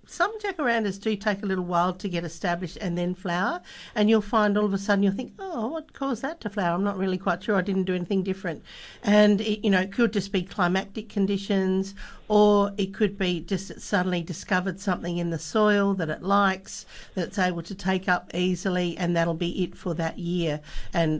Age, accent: 50-69, Australian